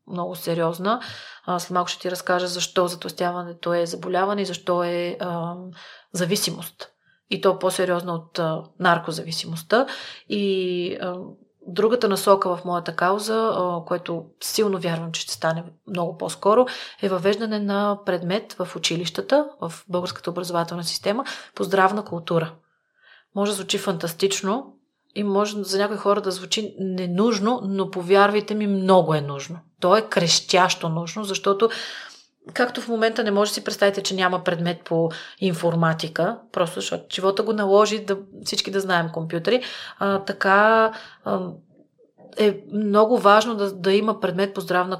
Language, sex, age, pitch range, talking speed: Bulgarian, female, 30-49, 175-205 Hz, 140 wpm